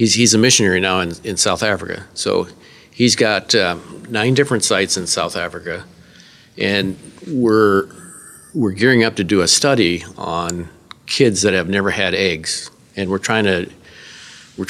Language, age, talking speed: English, 50-69, 165 wpm